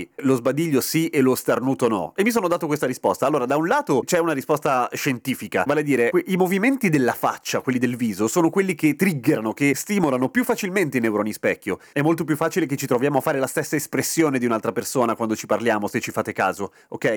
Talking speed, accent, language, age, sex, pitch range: 225 wpm, native, Italian, 30-49, male, 120-165 Hz